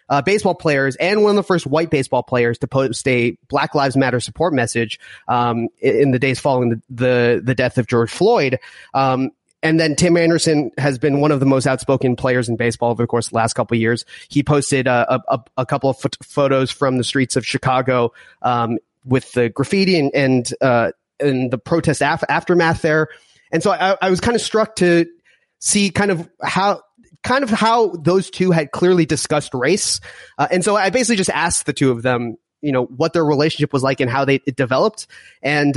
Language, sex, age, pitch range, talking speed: English, male, 30-49, 130-180 Hz, 215 wpm